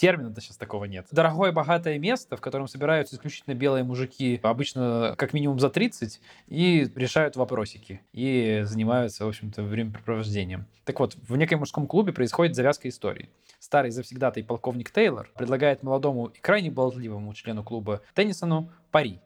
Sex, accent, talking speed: male, native, 150 wpm